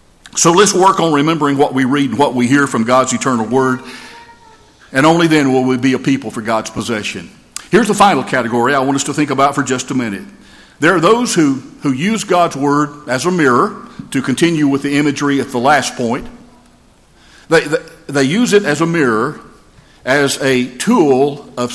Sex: male